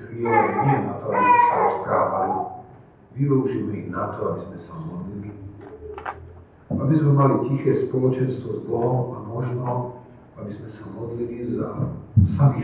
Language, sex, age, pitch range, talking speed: Slovak, male, 50-69, 105-130 Hz, 145 wpm